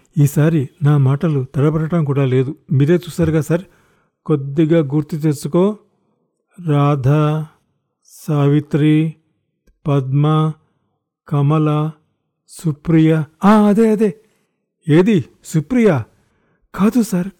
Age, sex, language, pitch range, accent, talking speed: 50-69, male, Telugu, 125-165 Hz, native, 80 wpm